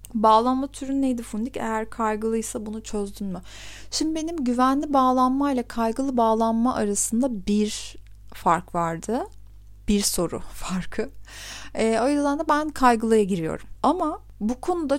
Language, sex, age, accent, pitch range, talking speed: Turkish, female, 30-49, native, 185-255 Hz, 130 wpm